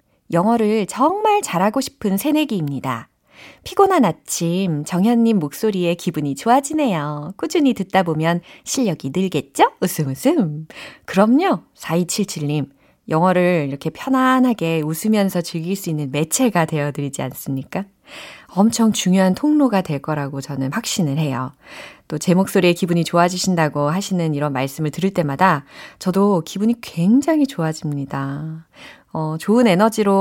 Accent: native